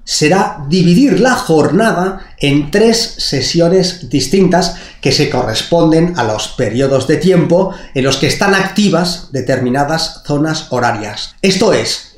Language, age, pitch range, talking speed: Spanish, 30-49, 135-190 Hz, 130 wpm